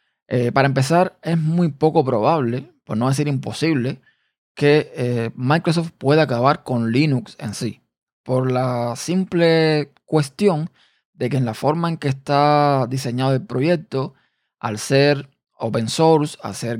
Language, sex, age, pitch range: Spanish, male, 20-39, 125-155 Hz